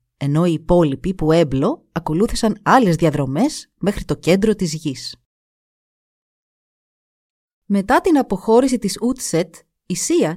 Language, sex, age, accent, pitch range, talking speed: Greek, female, 30-49, native, 160-225 Hz, 115 wpm